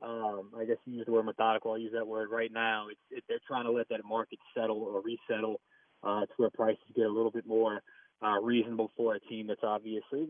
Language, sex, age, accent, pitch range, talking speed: English, male, 20-39, American, 110-130 Hz, 240 wpm